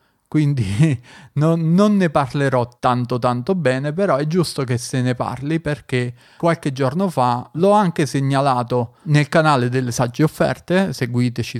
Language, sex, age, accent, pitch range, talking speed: Italian, male, 30-49, native, 125-150 Hz, 145 wpm